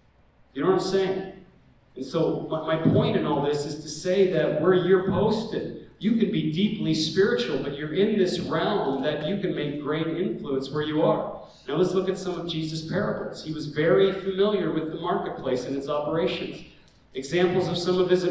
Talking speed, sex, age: 200 wpm, male, 50-69